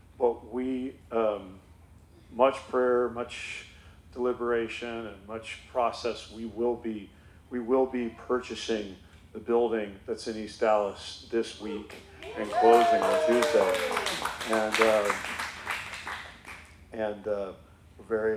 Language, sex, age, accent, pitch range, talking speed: English, male, 40-59, American, 95-120 Hz, 115 wpm